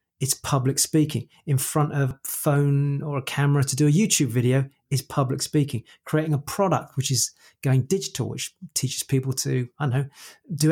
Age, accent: 40-59, British